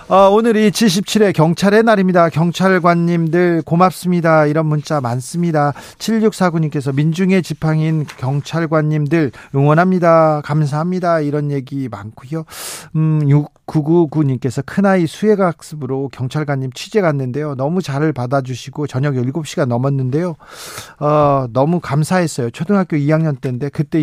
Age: 40-59